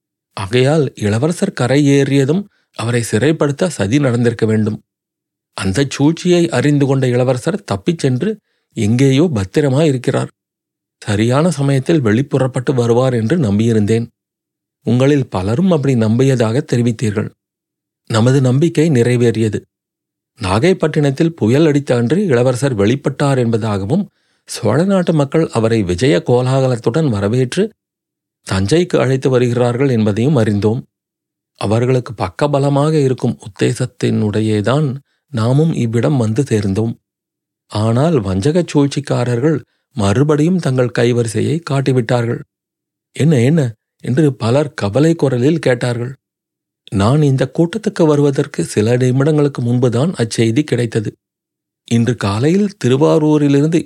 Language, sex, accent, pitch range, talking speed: Tamil, male, native, 115-150 Hz, 90 wpm